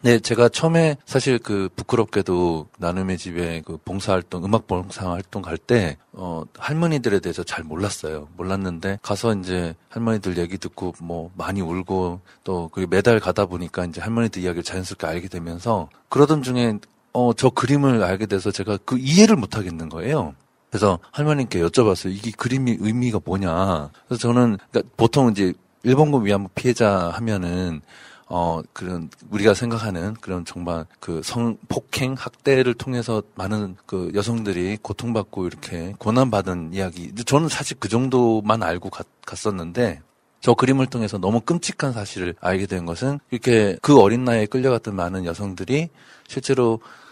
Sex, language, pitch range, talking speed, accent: male, English, 90-125 Hz, 140 wpm, Korean